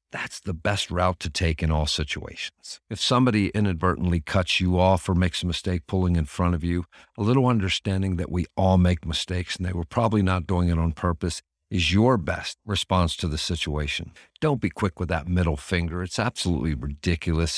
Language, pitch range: English, 80-95 Hz